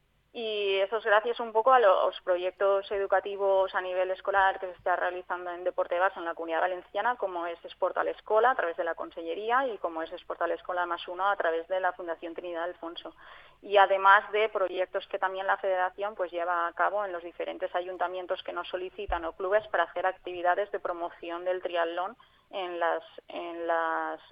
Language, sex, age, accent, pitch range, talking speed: Spanish, female, 20-39, Spanish, 175-195 Hz, 195 wpm